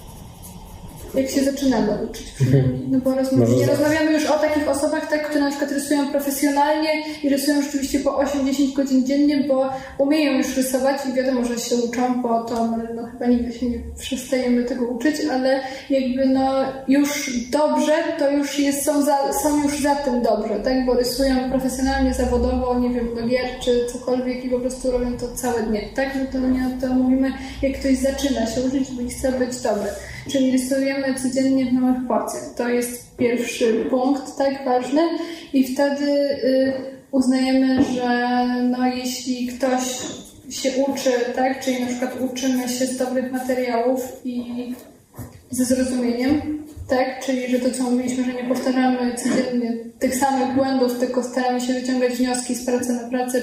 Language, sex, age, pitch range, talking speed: Polish, female, 20-39, 245-270 Hz, 165 wpm